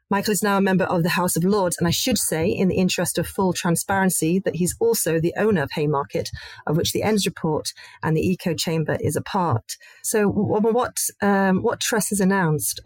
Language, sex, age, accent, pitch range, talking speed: English, female, 40-59, British, 155-185 Hz, 215 wpm